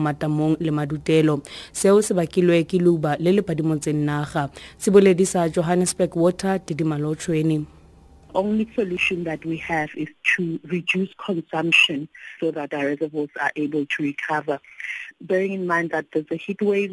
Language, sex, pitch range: English, female, 160-185 Hz